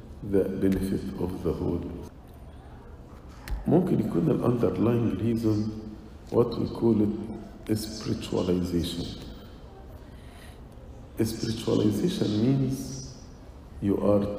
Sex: male